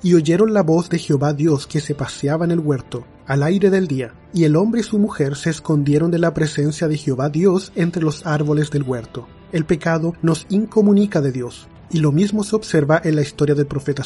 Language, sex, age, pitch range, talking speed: Spanish, male, 30-49, 145-175 Hz, 220 wpm